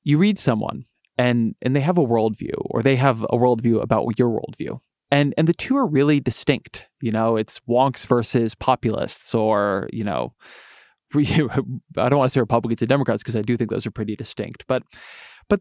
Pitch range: 115-140 Hz